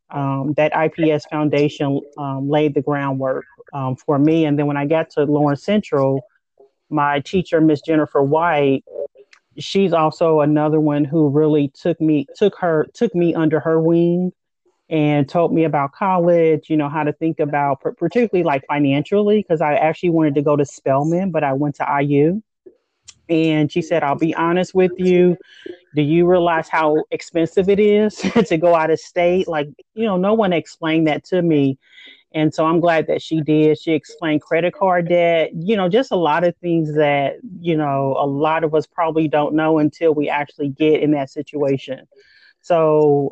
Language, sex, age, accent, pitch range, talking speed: English, male, 30-49, American, 145-175 Hz, 185 wpm